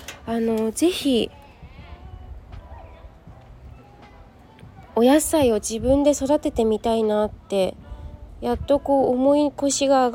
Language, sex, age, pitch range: Japanese, female, 20-39, 205-260 Hz